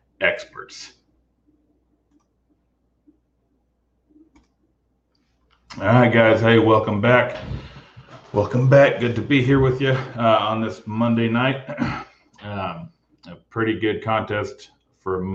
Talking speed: 100 wpm